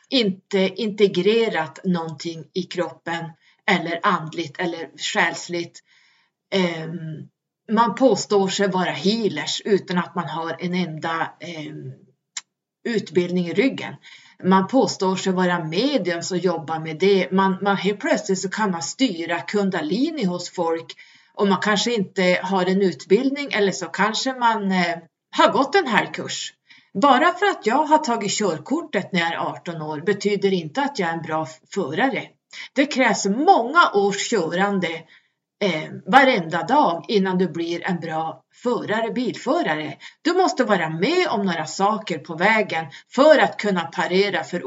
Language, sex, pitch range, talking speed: Swedish, female, 170-220 Hz, 145 wpm